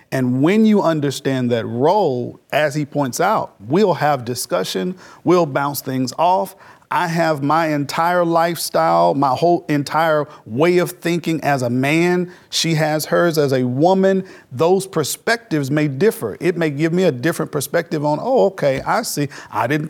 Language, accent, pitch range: English, American, 140-165 Hz